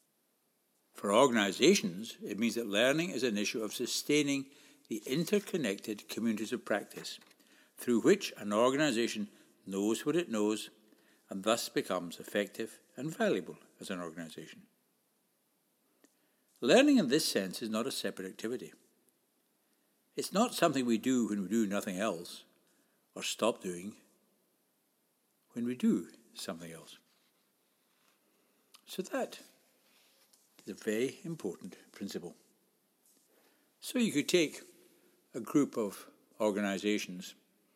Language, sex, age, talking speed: English, male, 60-79, 120 wpm